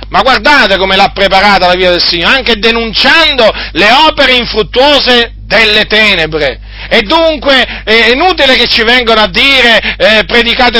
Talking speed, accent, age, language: 150 wpm, native, 40-59, Italian